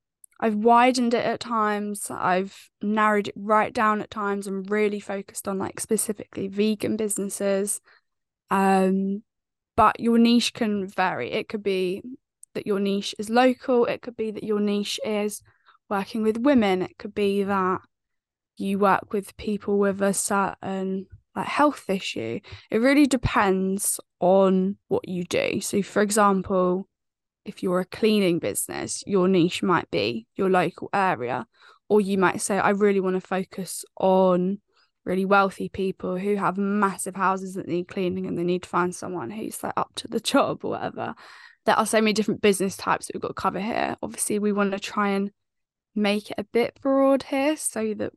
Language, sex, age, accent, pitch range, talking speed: English, female, 10-29, British, 190-215 Hz, 175 wpm